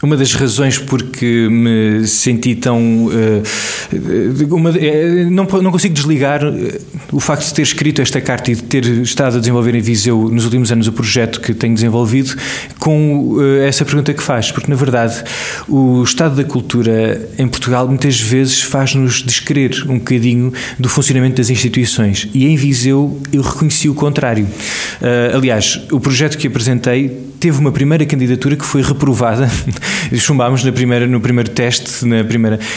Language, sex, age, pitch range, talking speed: Portuguese, male, 20-39, 120-145 Hz, 165 wpm